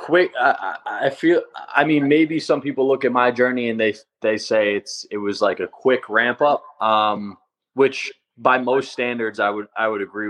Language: English